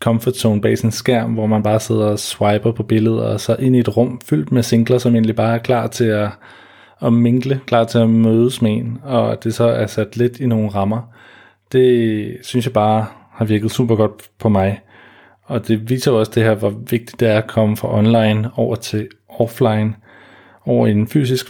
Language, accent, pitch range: Danish, native, 105-120 Hz